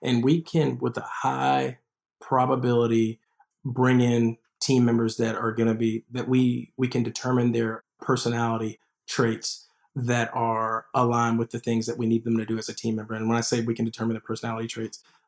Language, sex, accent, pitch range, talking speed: English, male, American, 115-130 Hz, 195 wpm